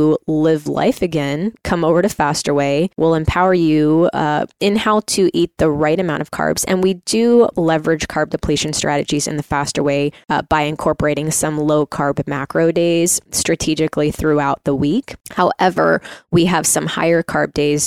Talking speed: 170 wpm